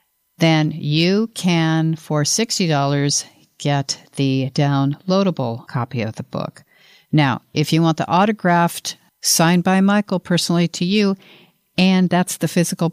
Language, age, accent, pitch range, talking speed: English, 50-69, American, 145-190 Hz, 130 wpm